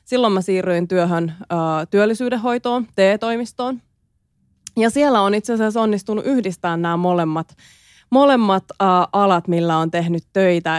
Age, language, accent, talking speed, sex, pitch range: 20-39, Finnish, native, 130 wpm, female, 165-200 Hz